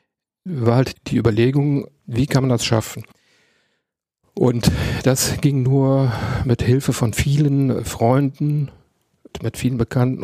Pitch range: 115-125 Hz